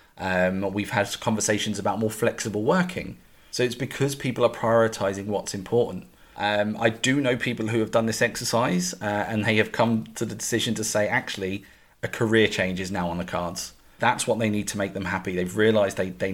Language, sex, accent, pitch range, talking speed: English, male, British, 105-125 Hz, 210 wpm